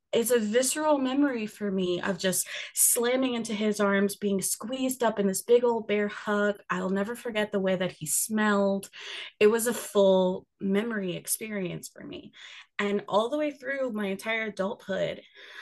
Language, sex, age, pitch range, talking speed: English, female, 20-39, 180-215 Hz, 175 wpm